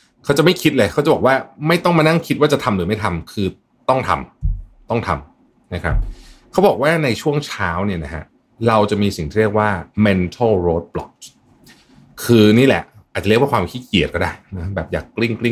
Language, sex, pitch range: Thai, male, 90-125 Hz